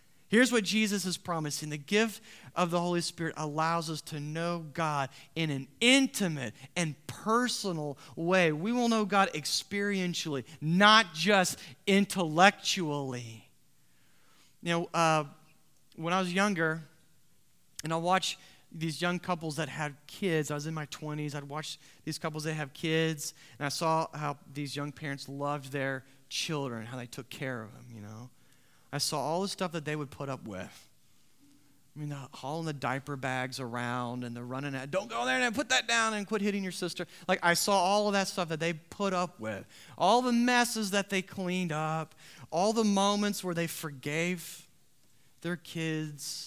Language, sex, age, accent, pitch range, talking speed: English, male, 30-49, American, 145-185 Hz, 175 wpm